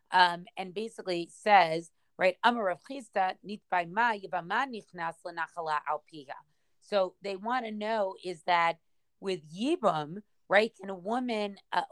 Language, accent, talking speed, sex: English, American, 95 wpm, female